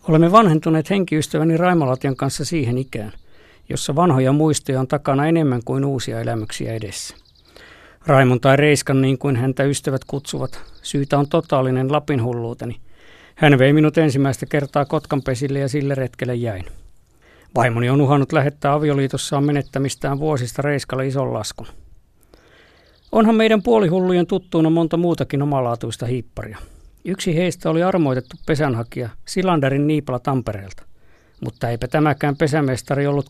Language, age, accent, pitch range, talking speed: Finnish, 50-69, native, 125-160 Hz, 130 wpm